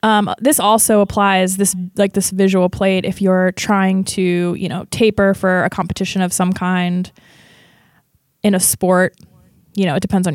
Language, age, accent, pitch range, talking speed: English, 20-39, American, 190-235 Hz, 175 wpm